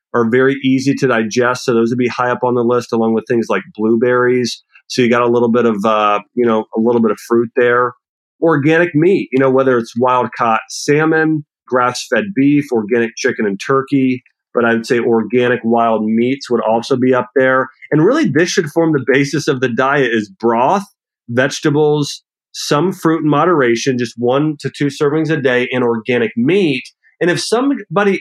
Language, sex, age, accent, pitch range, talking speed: English, male, 40-59, American, 115-145 Hz, 195 wpm